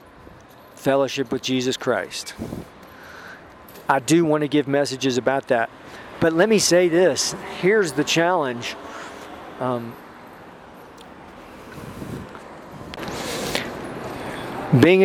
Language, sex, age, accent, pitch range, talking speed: English, male, 40-59, American, 125-145 Hz, 90 wpm